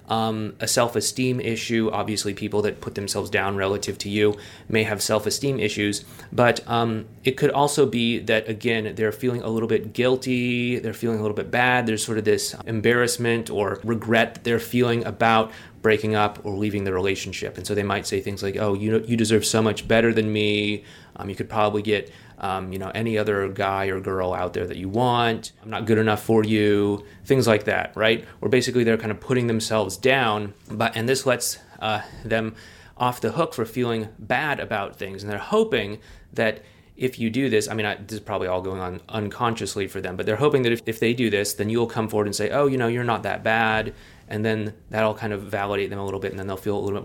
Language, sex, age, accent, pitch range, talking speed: English, male, 30-49, American, 105-120 Hz, 230 wpm